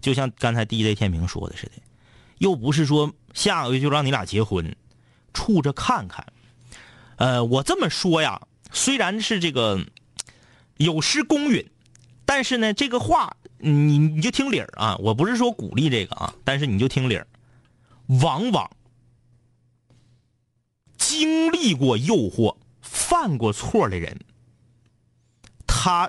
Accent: native